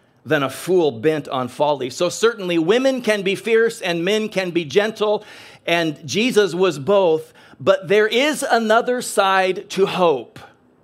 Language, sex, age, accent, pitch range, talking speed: English, male, 40-59, American, 150-195 Hz, 155 wpm